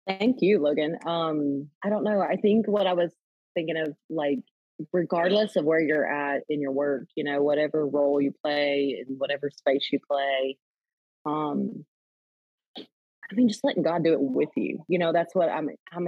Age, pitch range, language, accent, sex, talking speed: 30-49, 155-200 Hz, English, American, female, 185 wpm